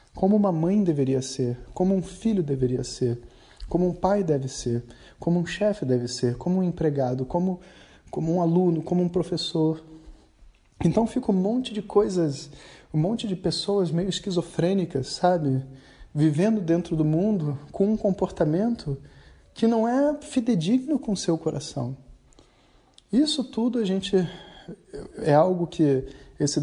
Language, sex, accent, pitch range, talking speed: Portuguese, male, Brazilian, 135-185 Hz, 150 wpm